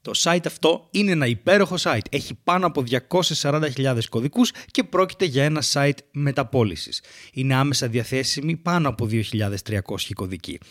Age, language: 30-49, Greek